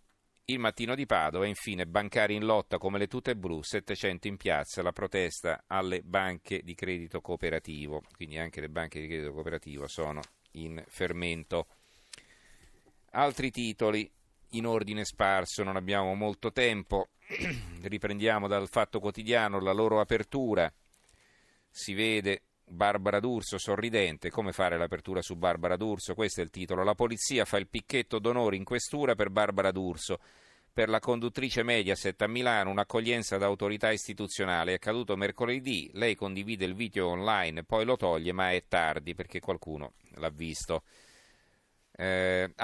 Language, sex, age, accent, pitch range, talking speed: Italian, male, 40-59, native, 95-115 Hz, 145 wpm